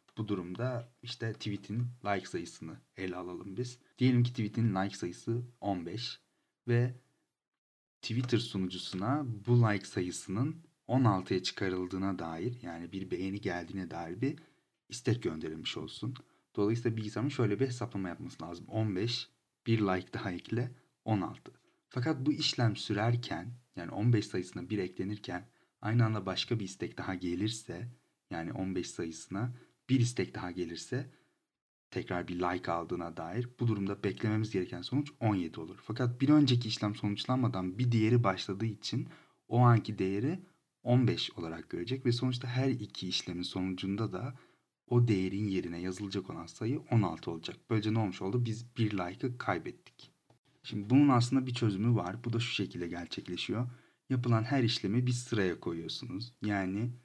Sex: male